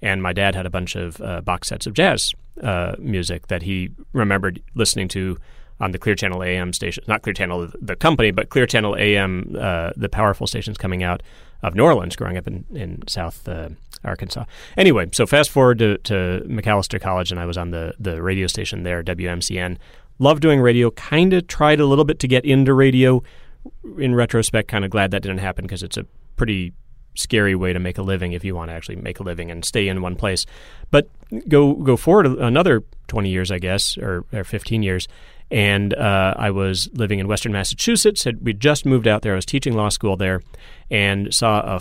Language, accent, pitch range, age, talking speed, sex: English, American, 90-115 Hz, 30-49, 210 wpm, male